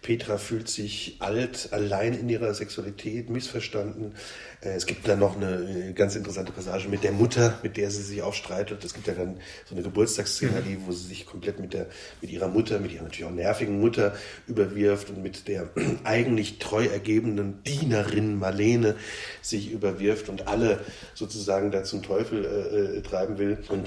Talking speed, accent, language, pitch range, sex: 175 wpm, German, German, 95-115 Hz, male